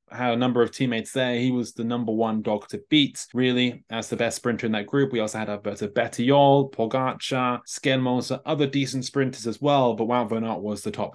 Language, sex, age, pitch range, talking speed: English, male, 20-39, 115-140 Hz, 210 wpm